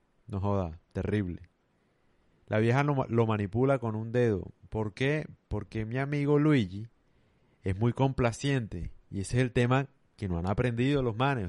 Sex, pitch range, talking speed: male, 100-125 Hz, 160 wpm